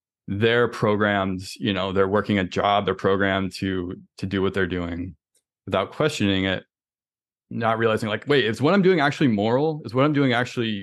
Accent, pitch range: American, 95-110 Hz